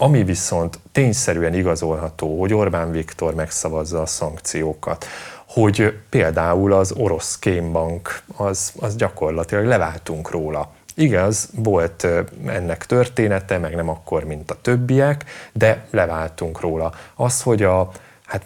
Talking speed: 120 wpm